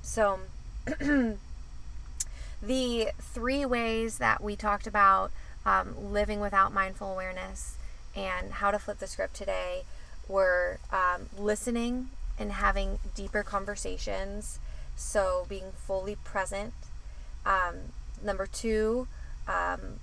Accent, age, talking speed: American, 20-39, 105 wpm